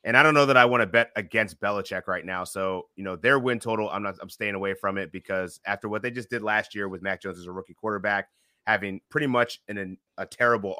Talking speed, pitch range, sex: 265 wpm, 95-120 Hz, male